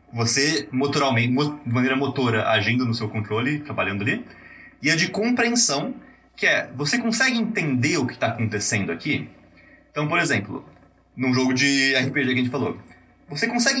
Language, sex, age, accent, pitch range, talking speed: Portuguese, male, 20-39, Brazilian, 125-170 Hz, 160 wpm